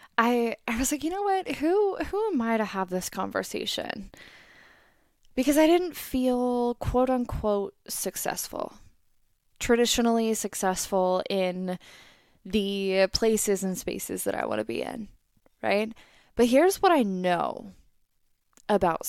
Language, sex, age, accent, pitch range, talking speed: English, female, 10-29, American, 195-250 Hz, 130 wpm